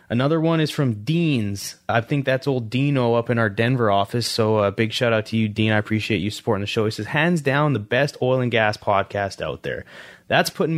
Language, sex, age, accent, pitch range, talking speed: English, male, 20-39, American, 115-140 Hz, 240 wpm